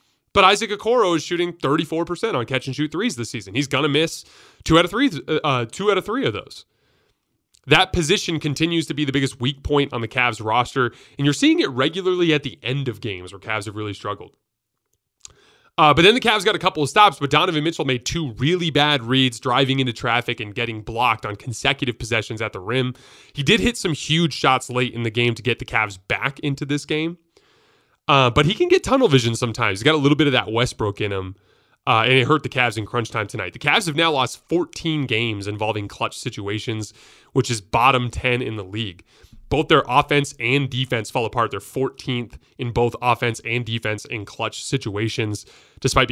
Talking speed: 210 wpm